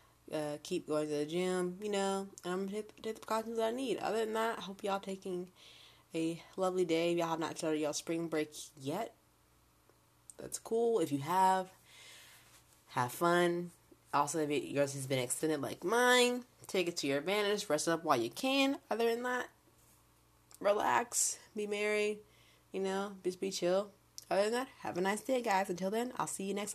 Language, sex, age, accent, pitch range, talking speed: English, female, 20-39, American, 150-210 Hz, 200 wpm